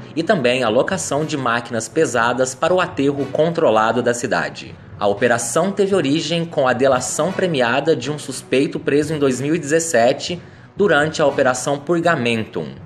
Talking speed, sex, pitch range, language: 145 wpm, male, 120-160 Hz, Portuguese